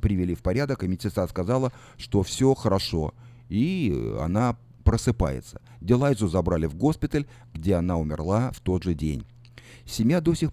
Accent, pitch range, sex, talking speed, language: native, 95-125 Hz, male, 150 wpm, Russian